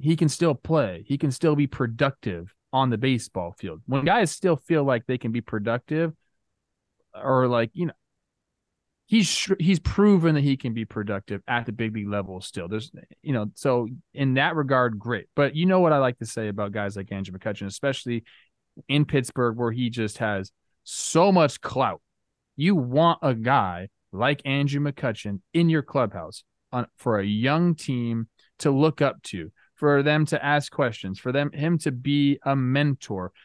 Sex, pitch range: male, 115-150 Hz